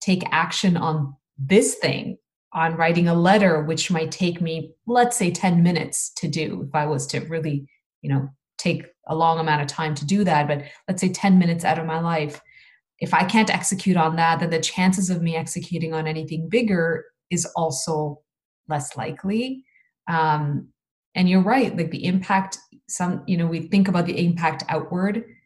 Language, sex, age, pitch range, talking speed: English, female, 20-39, 155-190 Hz, 185 wpm